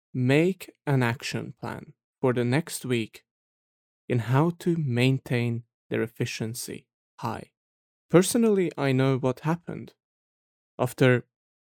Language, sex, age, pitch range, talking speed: English, male, 20-39, 115-130 Hz, 105 wpm